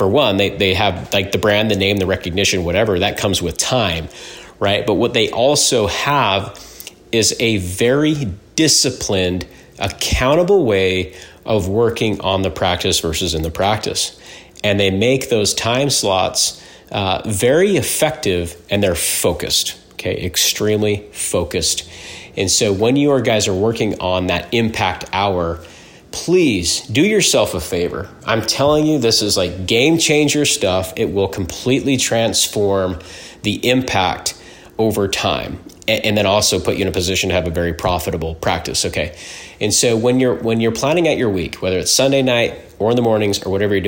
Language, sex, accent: English, male, American